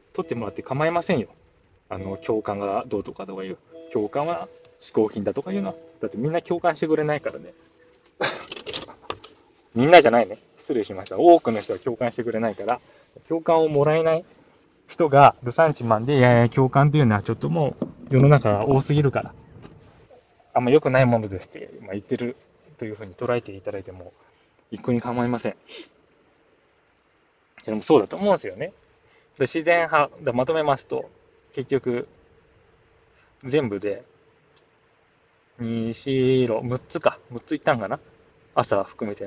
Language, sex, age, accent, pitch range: Japanese, male, 20-39, native, 115-160 Hz